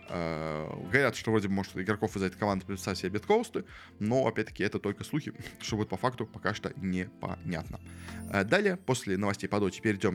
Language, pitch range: Russian, 100-135 Hz